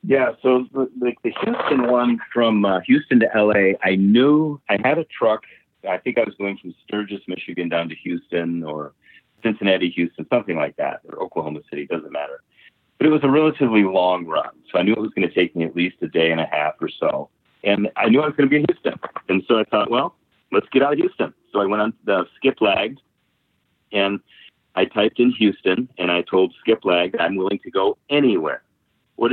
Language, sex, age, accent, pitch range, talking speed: English, male, 40-59, American, 95-155 Hz, 215 wpm